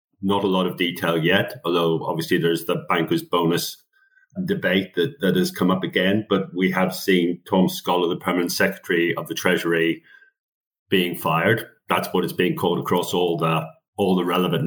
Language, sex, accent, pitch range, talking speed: English, male, British, 90-105 Hz, 175 wpm